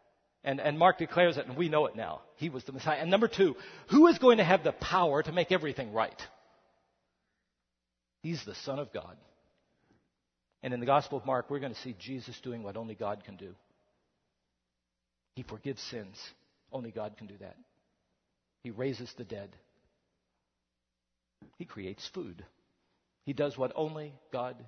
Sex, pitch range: male, 115-150 Hz